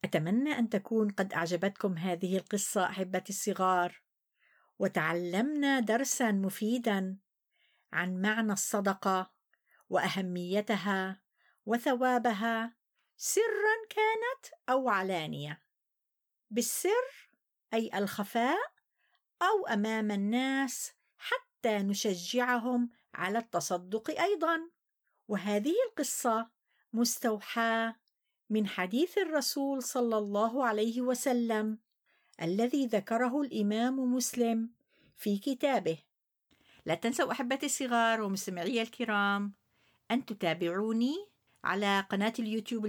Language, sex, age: English, female, 50-69